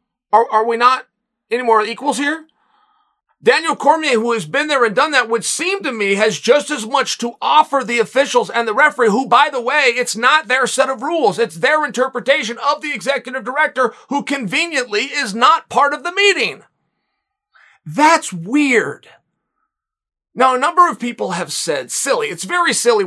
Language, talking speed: English, 180 wpm